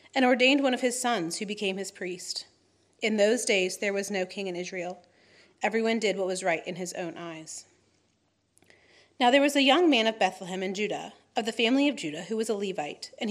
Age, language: 30-49, English